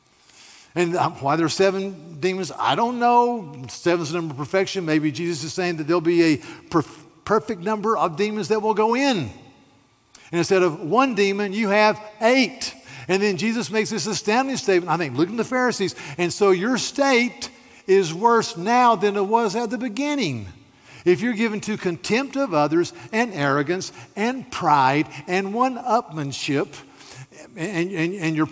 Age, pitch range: 50-69, 160-225 Hz